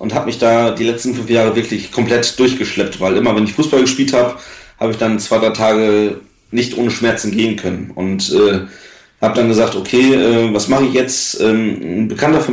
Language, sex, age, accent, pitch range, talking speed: German, male, 30-49, German, 110-130 Hz, 210 wpm